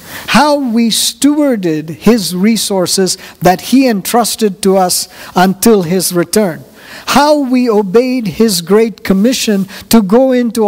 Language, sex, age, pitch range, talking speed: English, male, 50-69, 185-230 Hz, 125 wpm